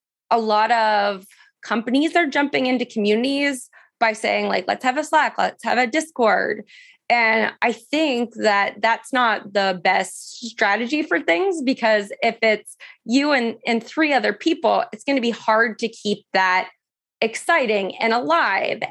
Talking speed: 160 wpm